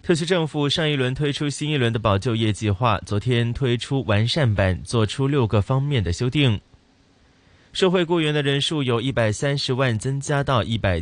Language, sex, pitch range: Chinese, male, 110-145 Hz